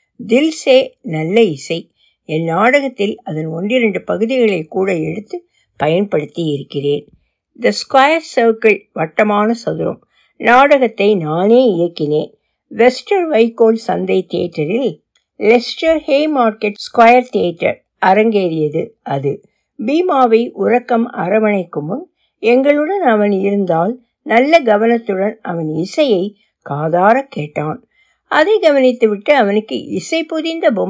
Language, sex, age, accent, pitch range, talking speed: Tamil, female, 60-79, native, 190-255 Hz, 65 wpm